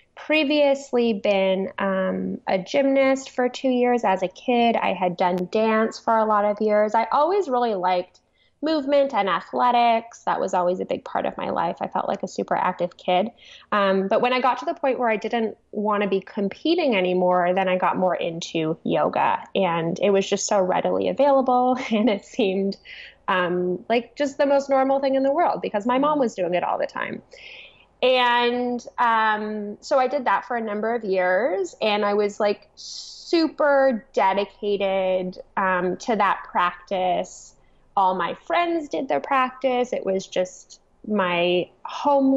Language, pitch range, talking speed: English, 190-260 Hz, 180 wpm